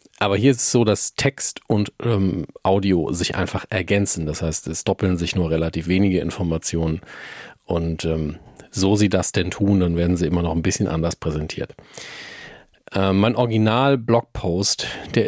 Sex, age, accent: male, 40-59, German